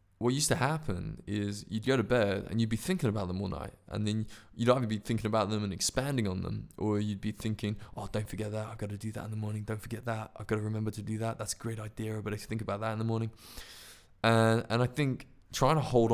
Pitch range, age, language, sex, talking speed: 100-115 Hz, 20-39, English, male, 280 wpm